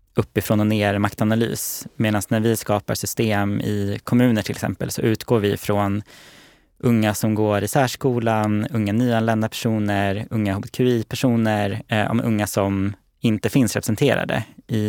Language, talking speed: Swedish, 135 wpm